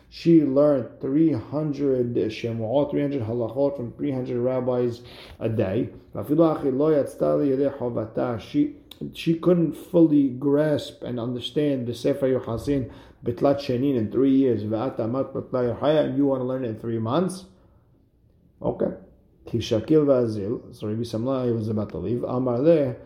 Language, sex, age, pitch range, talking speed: English, male, 50-69, 115-140 Hz, 120 wpm